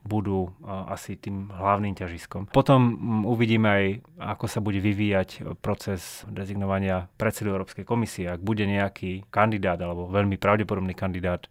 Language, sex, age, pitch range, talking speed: Slovak, male, 30-49, 95-110 Hz, 130 wpm